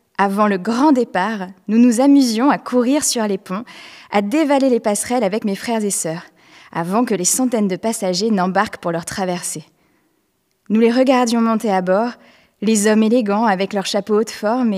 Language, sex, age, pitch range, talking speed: French, female, 20-39, 190-235 Hz, 185 wpm